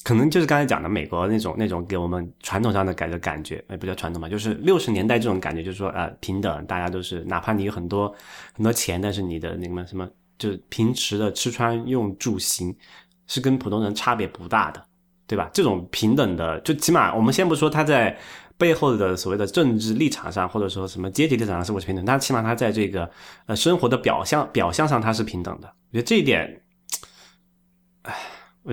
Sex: male